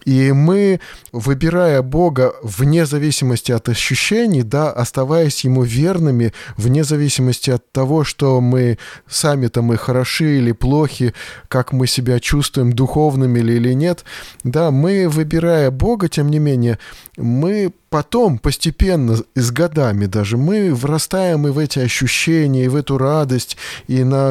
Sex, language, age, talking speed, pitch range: male, Russian, 20-39, 140 wpm, 125-155 Hz